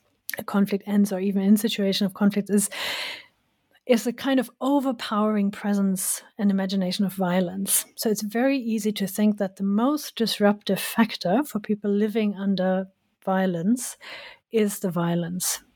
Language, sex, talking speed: English, female, 150 wpm